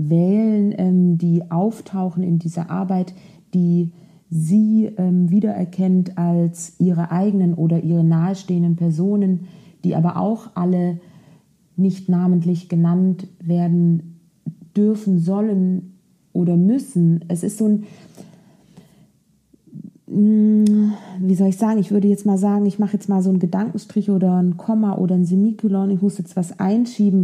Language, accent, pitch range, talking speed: German, German, 180-205 Hz, 135 wpm